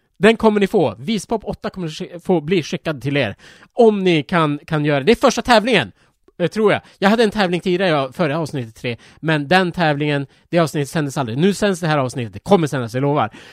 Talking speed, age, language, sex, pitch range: 220 wpm, 30-49, Swedish, male, 130-195 Hz